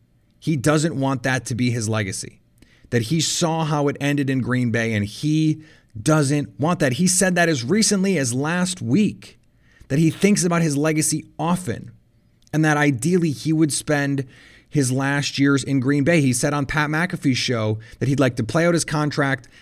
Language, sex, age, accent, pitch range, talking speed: English, male, 30-49, American, 115-155 Hz, 195 wpm